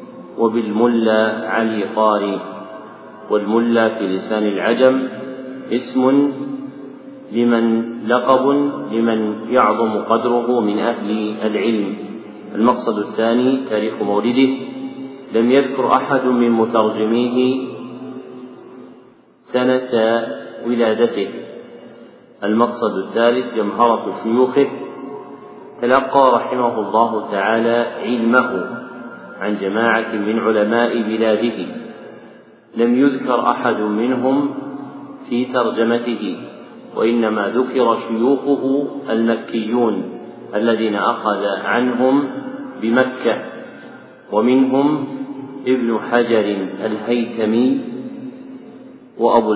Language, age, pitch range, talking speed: Arabic, 40-59, 110-130 Hz, 75 wpm